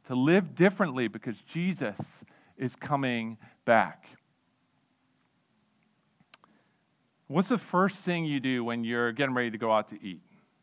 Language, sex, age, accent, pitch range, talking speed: English, male, 40-59, American, 125-195 Hz, 130 wpm